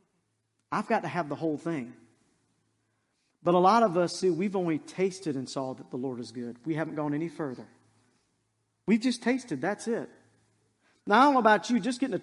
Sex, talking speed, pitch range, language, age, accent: male, 200 wpm, 155-250 Hz, English, 40-59, American